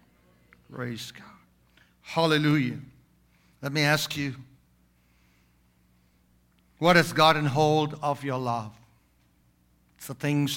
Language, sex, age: English, male, 60-79